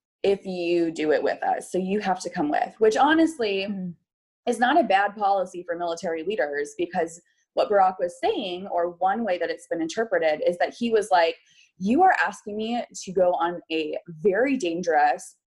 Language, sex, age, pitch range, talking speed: English, female, 20-39, 175-265 Hz, 190 wpm